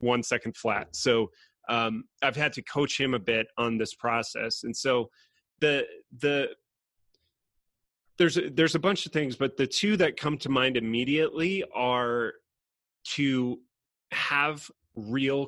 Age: 30-49